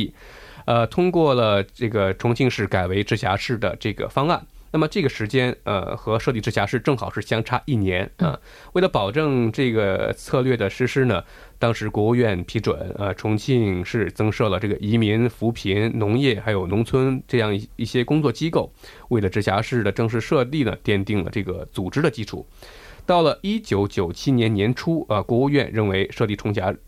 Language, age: Korean, 20-39